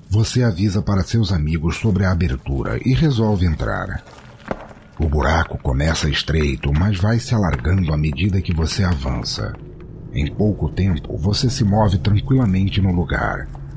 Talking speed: 145 wpm